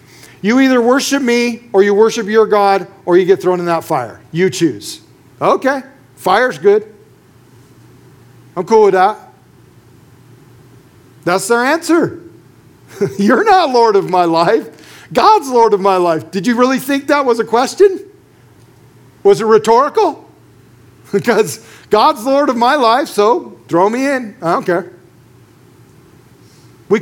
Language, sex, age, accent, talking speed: English, male, 50-69, American, 140 wpm